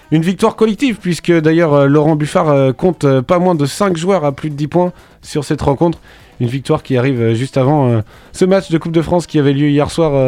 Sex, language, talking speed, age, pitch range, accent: male, French, 220 wpm, 20-39, 145-180 Hz, French